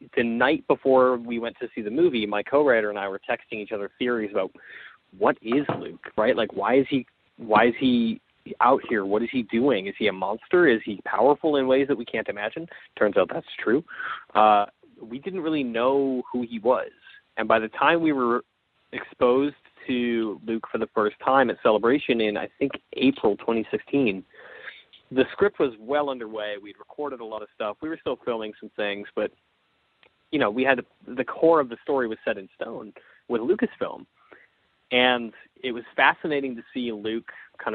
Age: 30-49